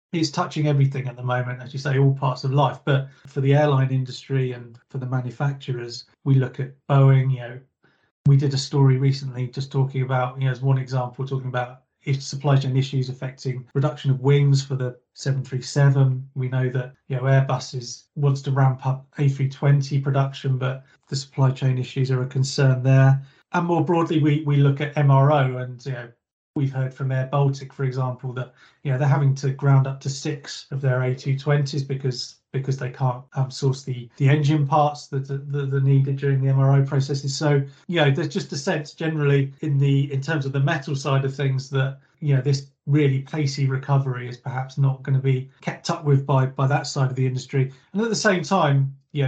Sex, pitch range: male, 130-140 Hz